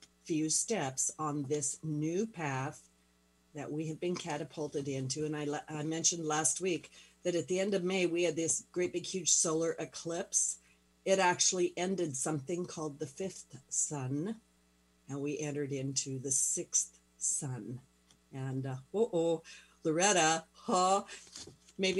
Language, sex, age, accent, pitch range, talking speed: English, female, 50-69, American, 135-175 Hz, 150 wpm